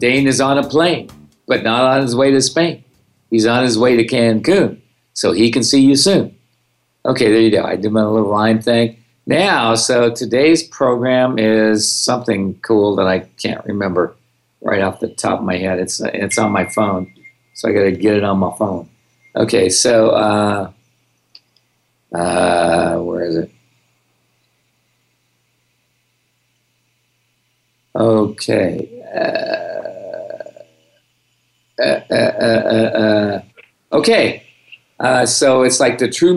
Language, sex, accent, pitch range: English, male, American, 110-135 Hz